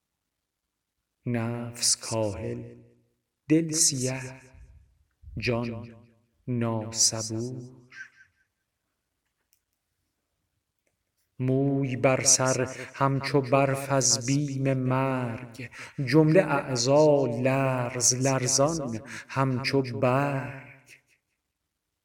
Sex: male